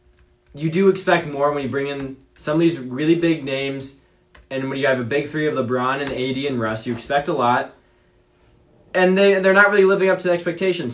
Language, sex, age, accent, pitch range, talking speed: English, male, 20-39, American, 125-165 Hz, 220 wpm